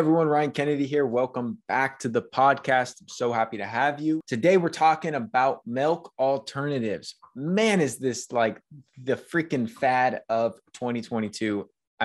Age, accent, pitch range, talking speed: 20-39, American, 115-150 Hz, 150 wpm